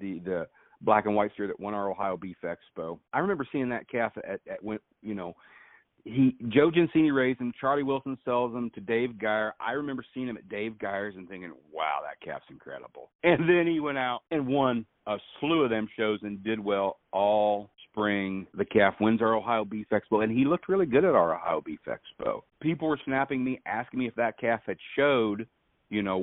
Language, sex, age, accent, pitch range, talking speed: English, male, 50-69, American, 95-125 Hz, 215 wpm